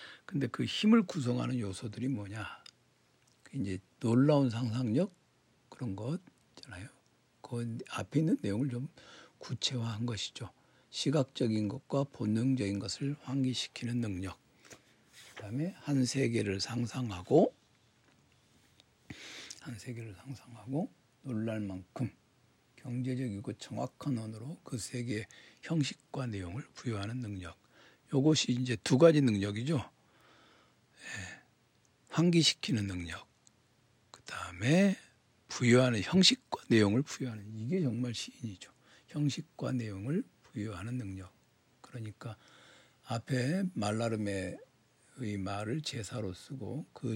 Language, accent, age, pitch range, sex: Korean, native, 60-79, 105-135 Hz, male